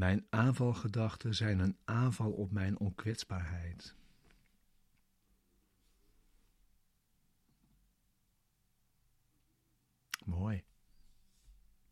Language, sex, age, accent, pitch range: Dutch, male, 60-79, Dutch, 90-105 Hz